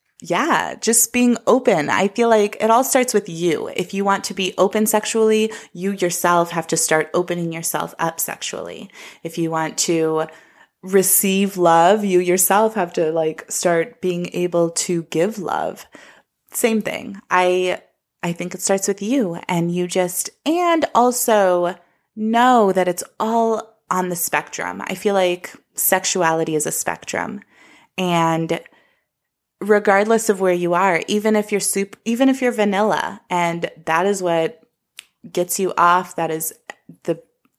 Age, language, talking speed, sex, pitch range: 20-39, English, 155 wpm, female, 175-215 Hz